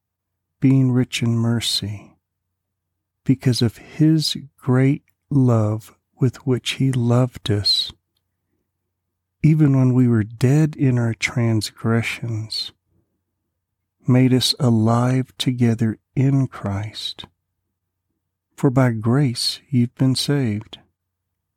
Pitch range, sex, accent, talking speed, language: 95-130 Hz, male, American, 95 wpm, English